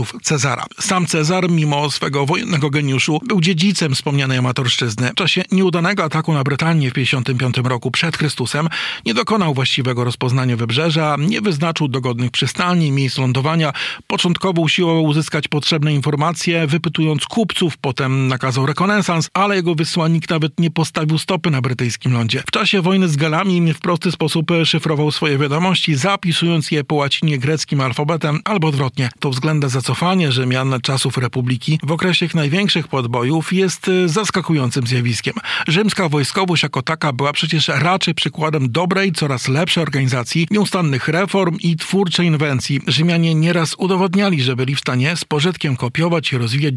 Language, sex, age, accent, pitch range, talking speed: Polish, male, 50-69, native, 135-175 Hz, 150 wpm